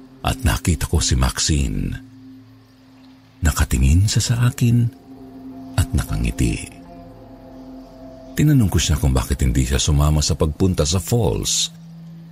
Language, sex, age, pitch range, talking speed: Filipino, male, 50-69, 80-125 Hz, 110 wpm